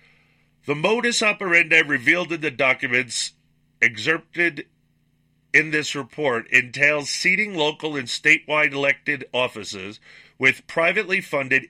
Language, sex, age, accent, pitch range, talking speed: English, male, 40-59, American, 115-160 Hz, 110 wpm